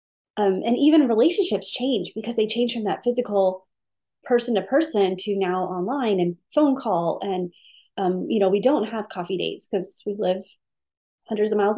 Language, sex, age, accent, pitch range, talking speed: English, female, 30-49, American, 195-250 Hz, 180 wpm